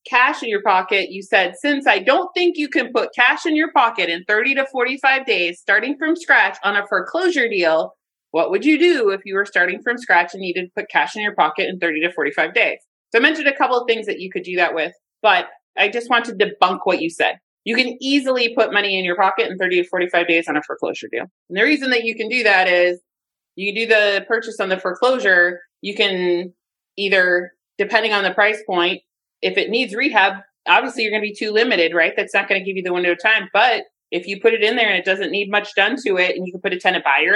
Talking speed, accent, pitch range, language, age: 255 wpm, American, 180-240 Hz, English, 30-49